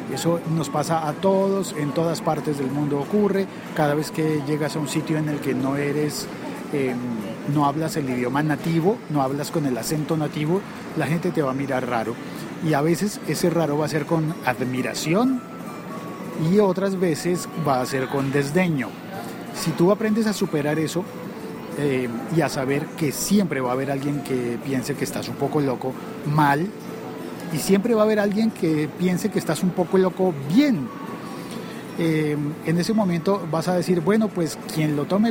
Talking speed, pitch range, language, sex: 185 wpm, 145-185 Hz, Spanish, male